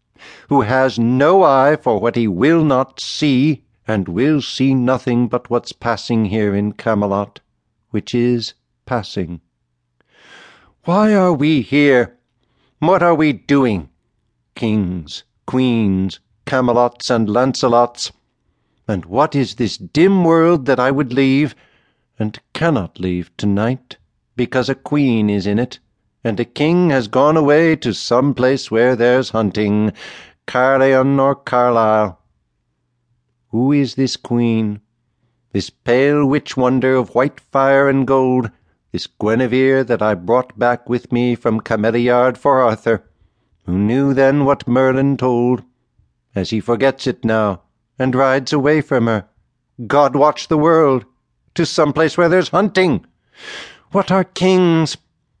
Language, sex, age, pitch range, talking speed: English, male, 60-79, 110-135 Hz, 135 wpm